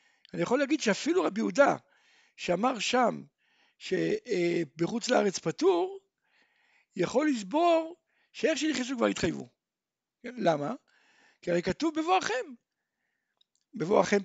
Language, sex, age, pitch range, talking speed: Hebrew, male, 60-79, 195-325 Hz, 95 wpm